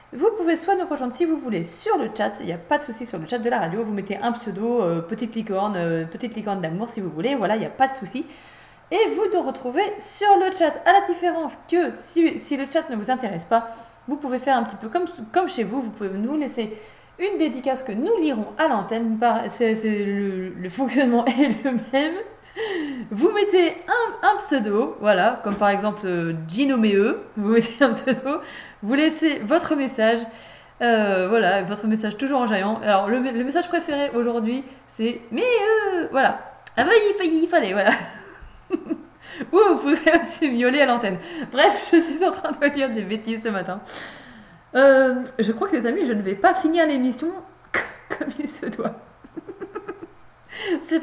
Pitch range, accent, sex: 225-325 Hz, French, female